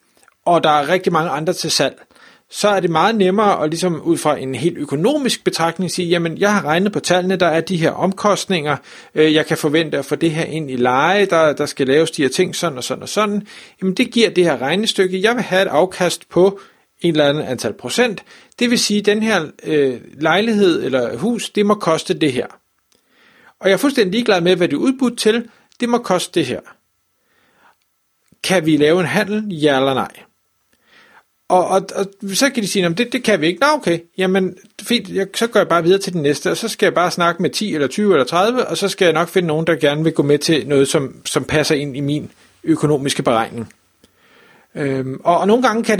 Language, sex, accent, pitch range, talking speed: Danish, male, native, 150-195 Hz, 230 wpm